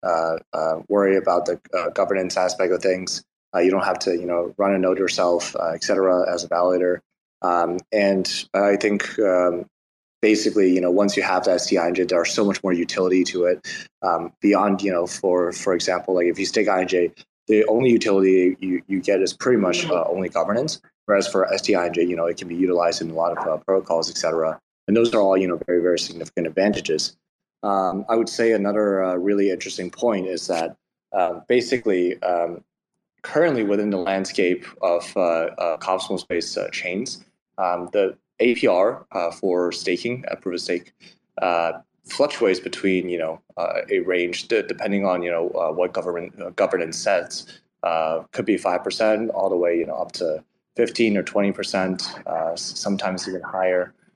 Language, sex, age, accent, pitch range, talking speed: English, male, 20-39, American, 85-100 Hz, 190 wpm